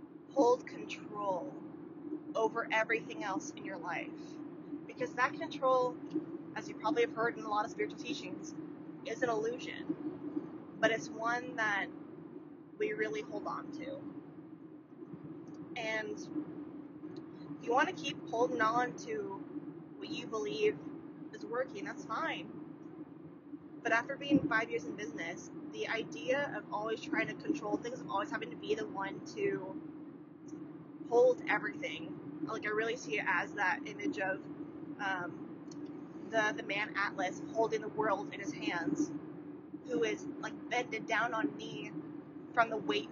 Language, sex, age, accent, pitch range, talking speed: English, female, 20-39, American, 295-315 Hz, 145 wpm